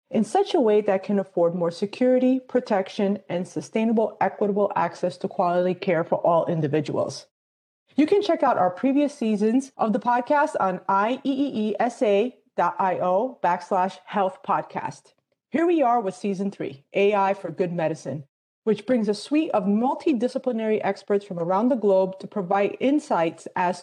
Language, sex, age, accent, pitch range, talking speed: English, female, 30-49, American, 185-245 Hz, 150 wpm